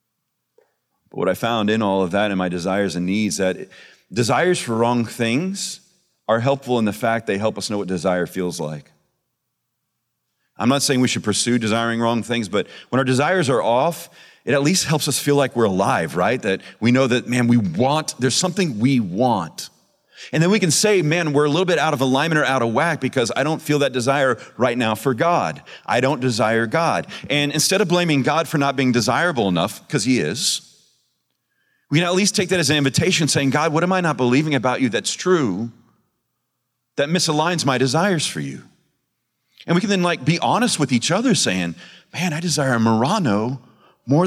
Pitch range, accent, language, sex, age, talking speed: 115-170 Hz, American, English, male, 40-59, 210 wpm